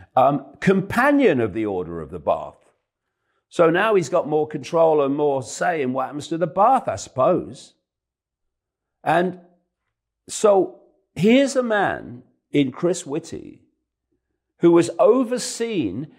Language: English